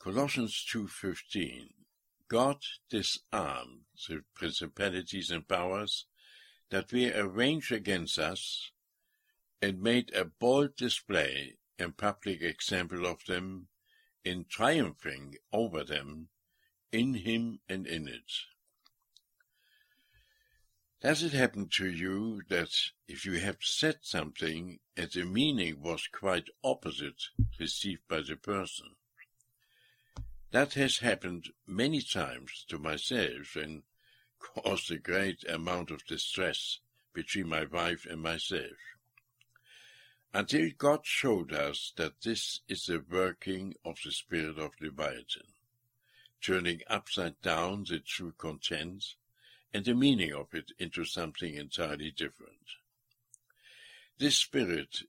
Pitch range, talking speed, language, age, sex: 85-120 Hz, 110 wpm, English, 60-79, male